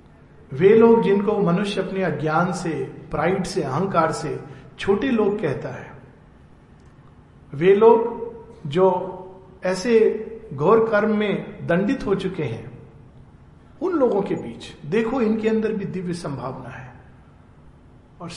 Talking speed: 125 wpm